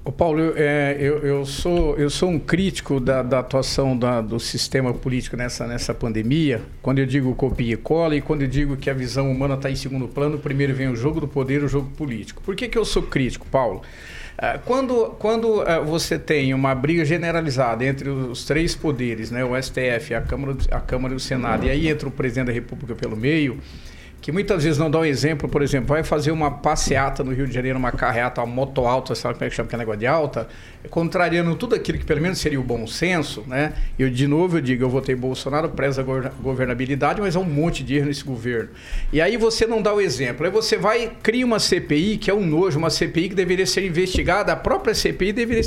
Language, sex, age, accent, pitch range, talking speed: Portuguese, male, 50-69, Brazilian, 130-175 Hz, 230 wpm